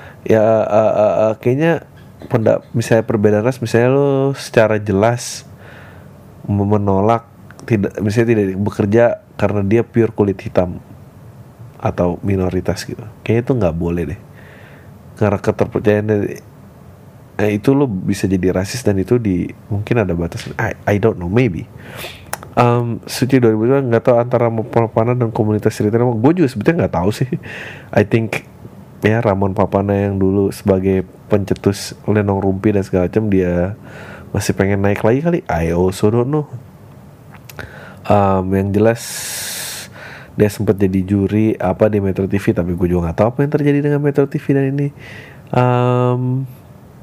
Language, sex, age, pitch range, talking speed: Indonesian, male, 30-49, 100-125 Hz, 145 wpm